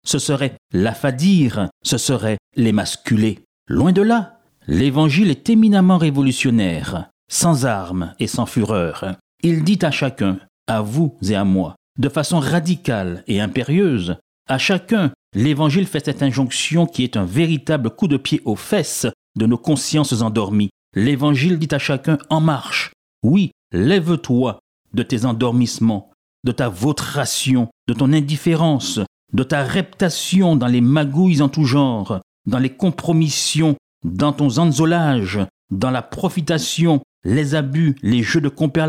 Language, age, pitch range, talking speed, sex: French, 60-79, 115-160 Hz, 140 wpm, male